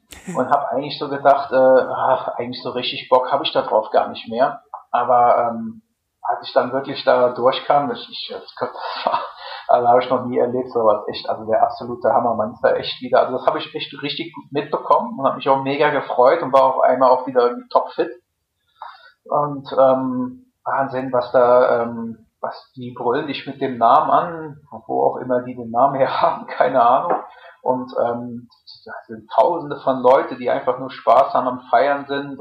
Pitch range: 120-150 Hz